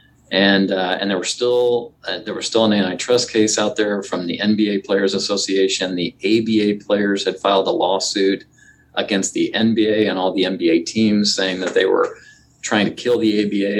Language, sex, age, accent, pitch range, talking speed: English, male, 40-59, American, 95-120 Hz, 185 wpm